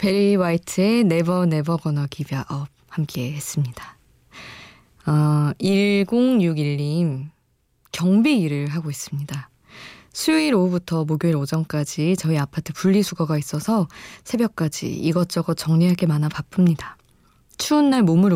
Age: 20-39